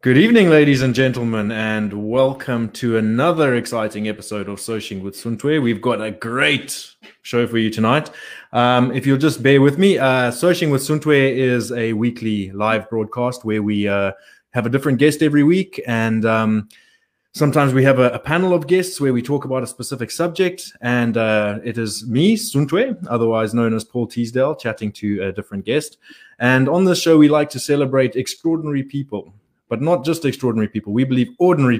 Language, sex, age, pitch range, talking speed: English, male, 20-39, 110-140 Hz, 185 wpm